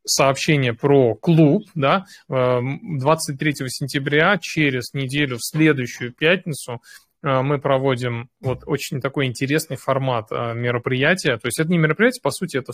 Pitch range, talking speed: 125-155 Hz, 125 wpm